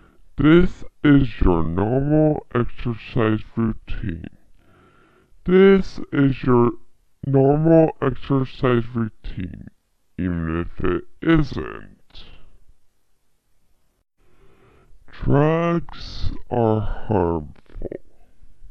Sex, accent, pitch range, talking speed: female, American, 90-140 Hz, 60 wpm